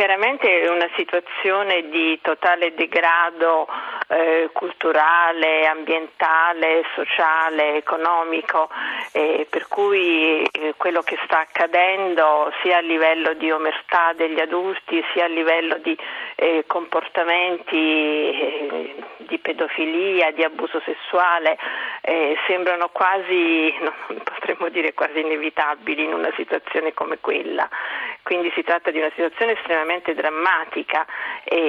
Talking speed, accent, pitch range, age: 115 wpm, native, 160-185 Hz, 50-69